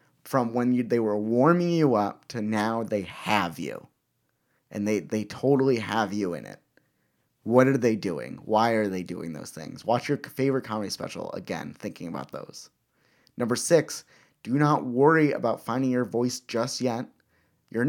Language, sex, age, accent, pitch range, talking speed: English, male, 30-49, American, 110-140 Hz, 175 wpm